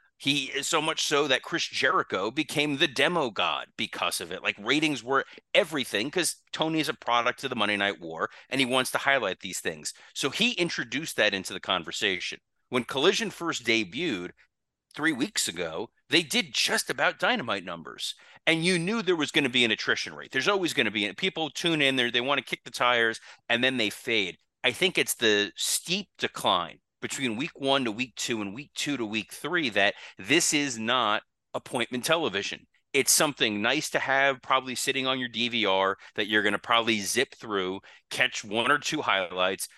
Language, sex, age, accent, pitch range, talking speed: English, male, 40-59, American, 115-155 Hz, 200 wpm